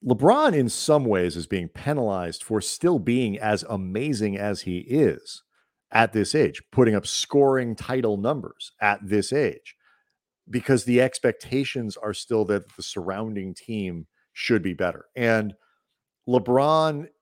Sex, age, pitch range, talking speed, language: male, 40-59, 95-130 Hz, 140 wpm, English